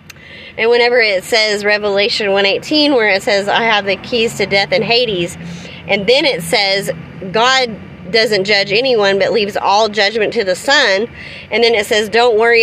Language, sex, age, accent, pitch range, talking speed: English, female, 30-49, American, 195-240 Hz, 180 wpm